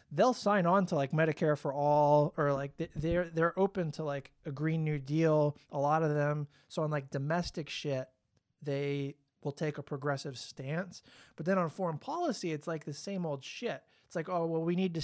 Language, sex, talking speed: English, male, 210 wpm